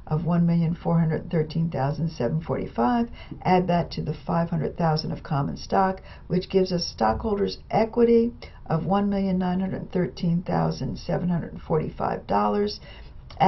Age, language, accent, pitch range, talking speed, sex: 60-79, English, American, 160-195 Hz, 75 wpm, female